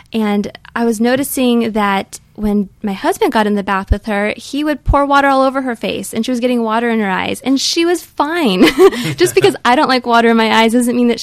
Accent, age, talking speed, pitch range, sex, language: American, 20-39, 245 wpm, 195-235 Hz, female, English